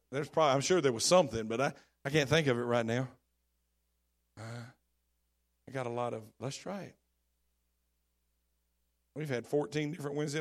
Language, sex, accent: English, male, American